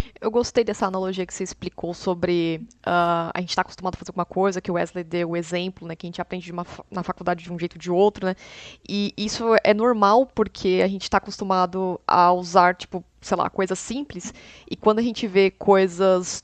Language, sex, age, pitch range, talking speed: Portuguese, female, 20-39, 185-250 Hz, 225 wpm